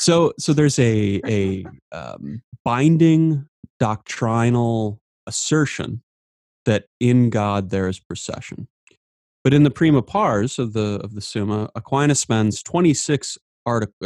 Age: 30-49